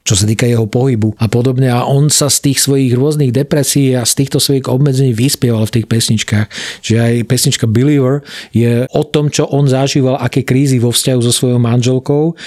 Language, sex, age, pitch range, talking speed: Slovak, male, 40-59, 115-140 Hz, 195 wpm